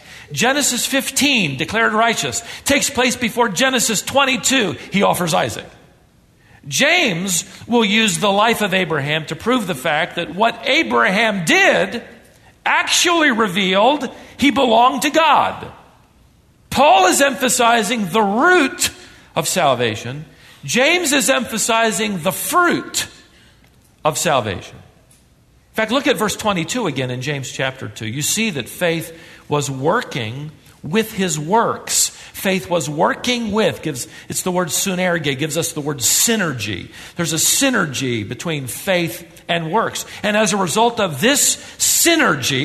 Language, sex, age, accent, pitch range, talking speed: English, male, 50-69, American, 165-255 Hz, 130 wpm